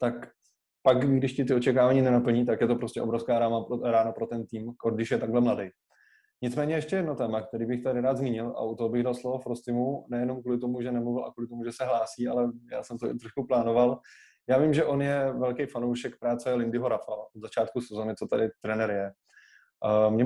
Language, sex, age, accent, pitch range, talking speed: Czech, male, 20-39, native, 120-135 Hz, 215 wpm